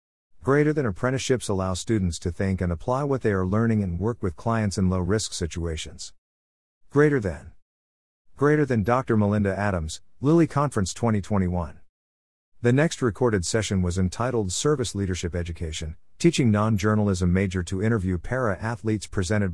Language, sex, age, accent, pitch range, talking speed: English, male, 50-69, American, 90-115 Hz, 140 wpm